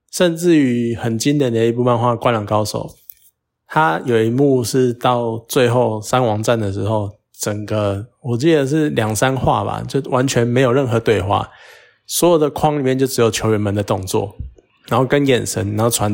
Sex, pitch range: male, 110-135 Hz